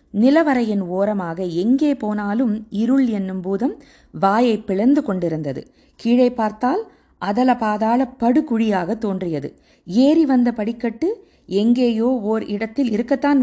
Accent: native